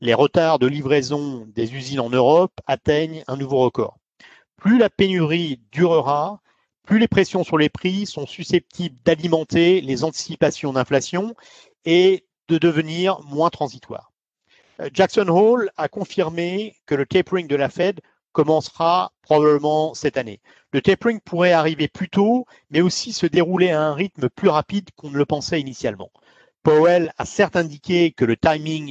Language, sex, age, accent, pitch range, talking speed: English, male, 50-69, French, 140-180 Hz, 155 wpm